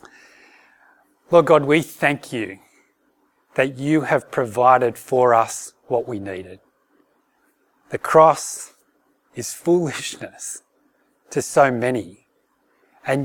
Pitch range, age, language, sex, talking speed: 120-145 Hz, 30-49, English, male, 100 wpm